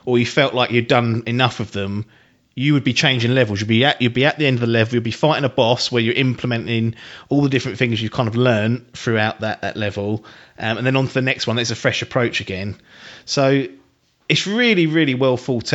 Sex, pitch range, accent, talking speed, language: male, 110-135 Hz, British, 245 wpm, English